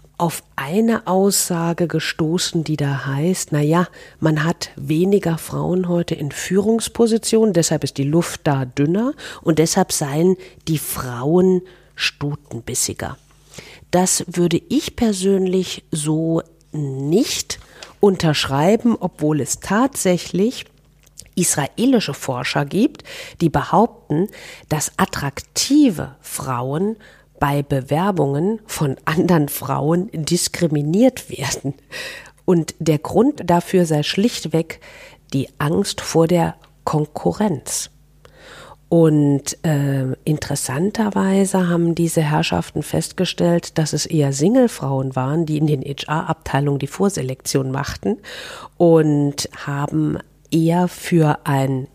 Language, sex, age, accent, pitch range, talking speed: German, female, 50-69, German, 145-185 Hz, 100 wpm